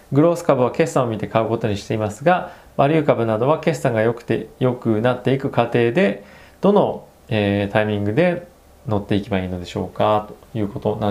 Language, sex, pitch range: Japanese, male, 105-160 Hz